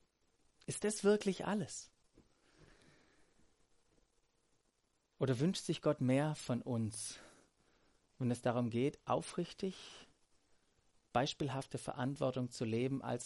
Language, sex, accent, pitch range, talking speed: German, male, German, 125-170 Hz, 95 wpm